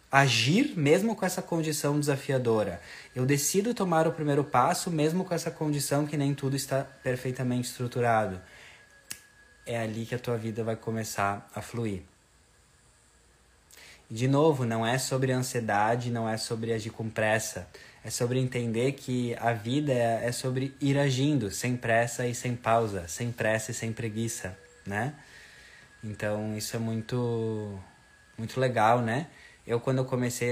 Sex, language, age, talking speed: male, Portuguese, 20-39, 155 wpm